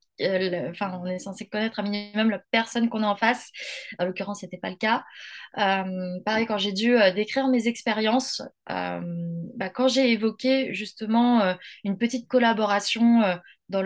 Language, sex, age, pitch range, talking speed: French, female, 20-39, 200-260 Hz, 165 wpm